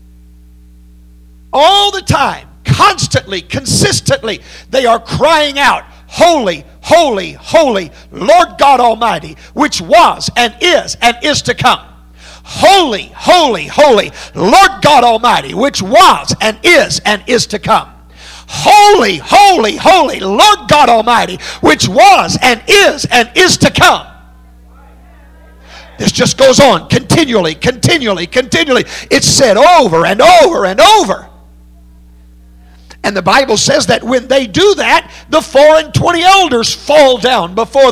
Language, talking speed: English, 130 wpm